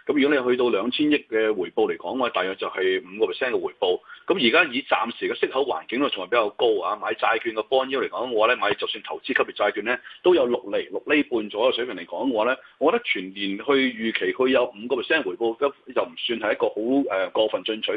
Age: 30-49